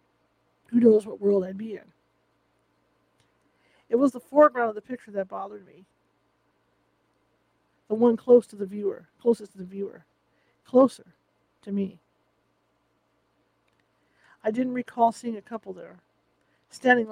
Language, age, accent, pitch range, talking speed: English, 50-69, American, 195-235 Hz, 130 wpm